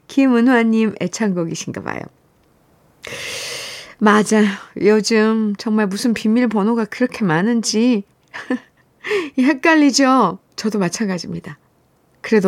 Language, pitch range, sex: Korean, 195-280 Hz, female